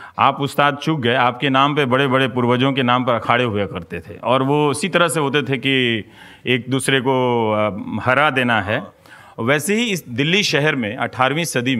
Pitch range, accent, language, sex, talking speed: 115-150 Hz, native, Hindi, male, 200 wpm